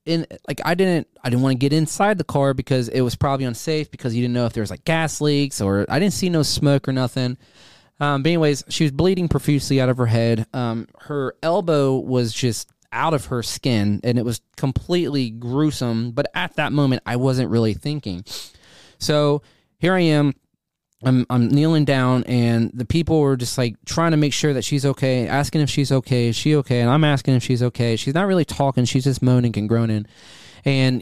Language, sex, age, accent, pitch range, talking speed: English, male, 20-39, American, 120-150 Hz, 215 wpm